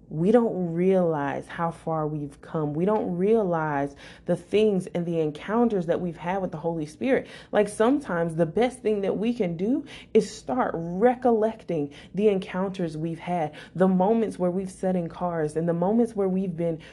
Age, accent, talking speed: 20-39, American, 180 wpm